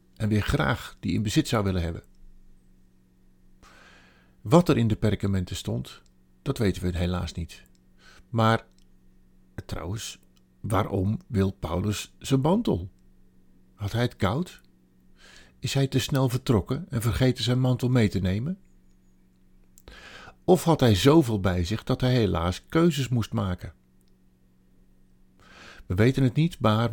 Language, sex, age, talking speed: Dutch, male, 50-69, 135 wpm